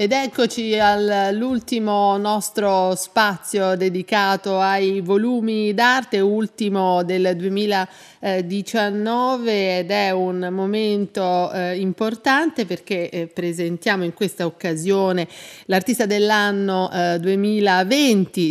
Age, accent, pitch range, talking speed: 40-59, native, 170-205 Hz, 95 wpm